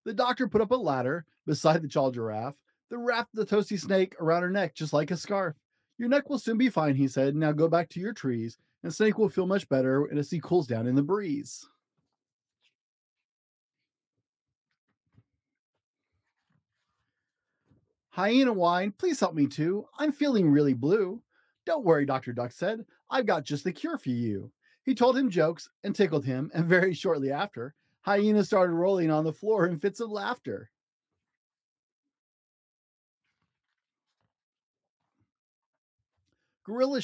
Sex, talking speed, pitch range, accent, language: male, 150 wpm, 150-235 Hz, American, English